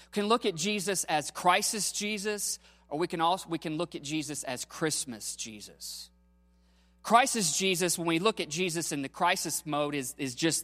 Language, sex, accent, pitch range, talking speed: English, male, American, 135-190 Hz, 185 wpm